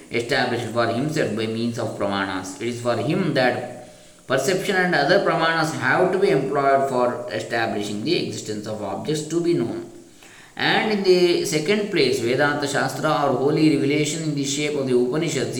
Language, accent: Kannada, native